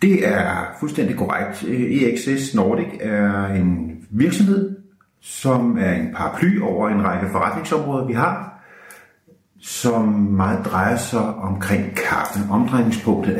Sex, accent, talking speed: male, native, 115 wpm